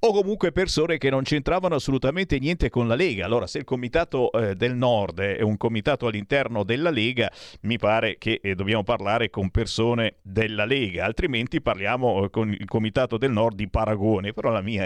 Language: Italian